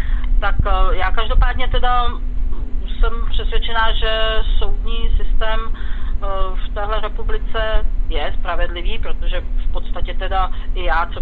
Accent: native